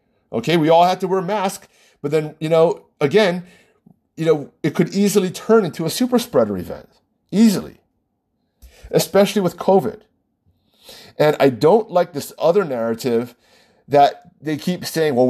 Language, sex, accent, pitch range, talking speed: English, male, American, 140-200 Hz, 155 wpm